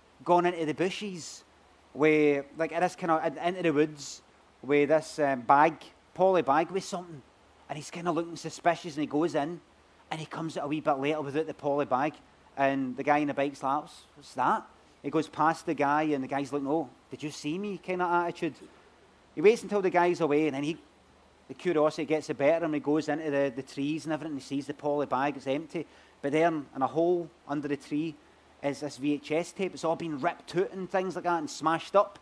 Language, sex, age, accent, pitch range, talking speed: English, male, 30-49, British, 145-180 Hz, 235 wpm